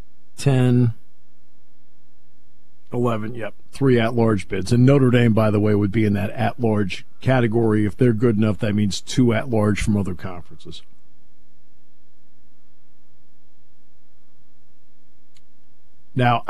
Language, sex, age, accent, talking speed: English, male, 50-69, American, 110 wpm